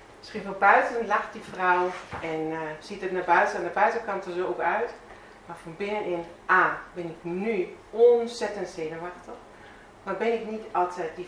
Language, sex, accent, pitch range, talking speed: Dutch, female, Dutch, 165-195 Hz, 180 wpm